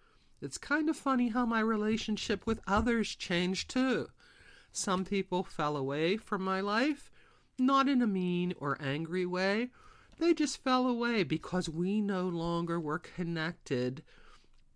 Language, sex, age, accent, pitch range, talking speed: English, male, 50-69, American, 145-200 Hz, 140 wpm